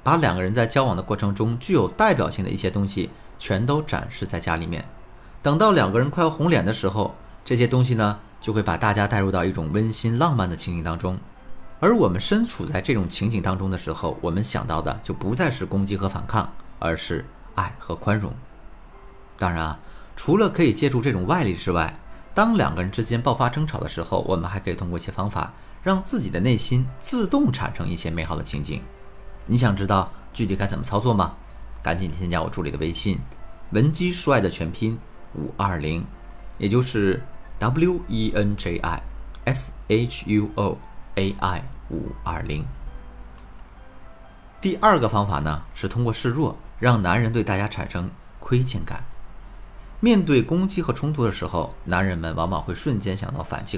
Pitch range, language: 90-120 Hz, Chinese